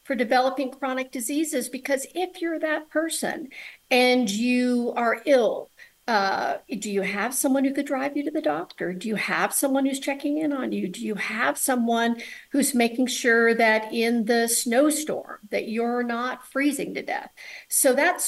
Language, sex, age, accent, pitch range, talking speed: English, female, 50-69, American, 230-285 Hz, 175 wpm